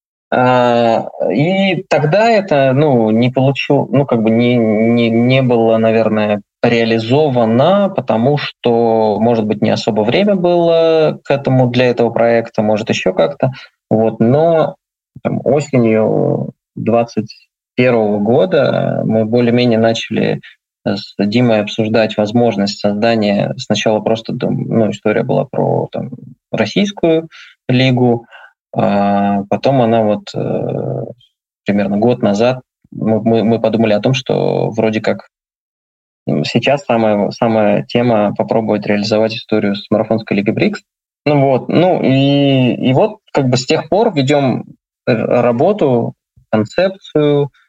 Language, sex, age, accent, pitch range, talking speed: Russian, male, 20-39, native, 110-135 Hz, 120 wpm